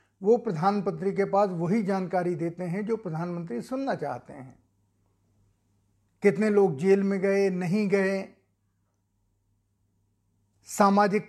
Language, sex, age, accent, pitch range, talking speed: Hindi, male, 50-69, native, 140-205 Hz, 110 wpm